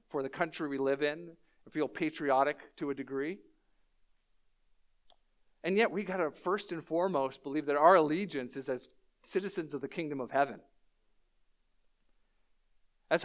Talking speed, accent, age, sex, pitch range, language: 150 wpm, American, 50-69, male, 160-240 Hz, English